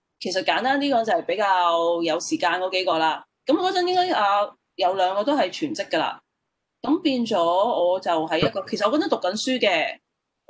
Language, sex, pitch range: Chinese, female, 180-295 Hz